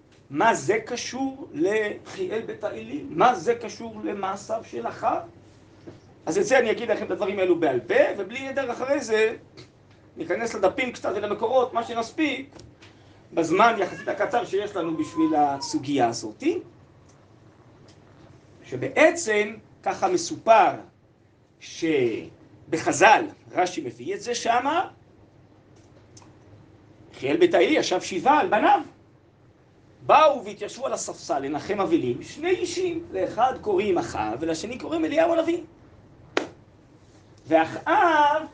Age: 40-59